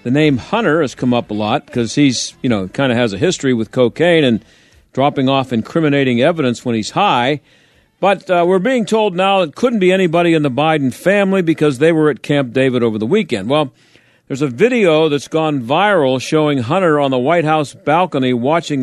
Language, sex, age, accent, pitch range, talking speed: English, male, 50-69, American, 125-170 Hz, 205 wpm